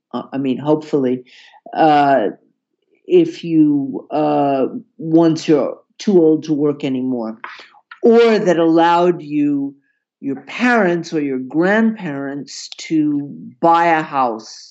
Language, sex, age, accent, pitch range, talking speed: English, male, 50-69, American, 140-210 Hz, 110 wpm